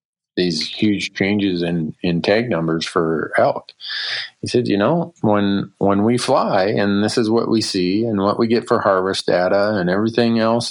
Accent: American